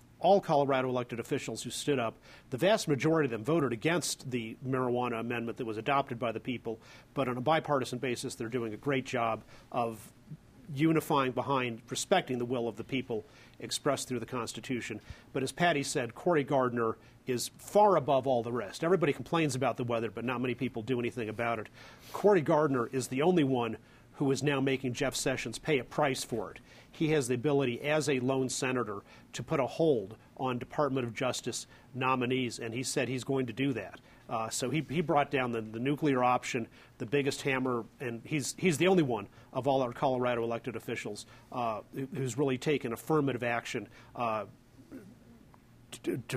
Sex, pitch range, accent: male, 120-140 Hz, American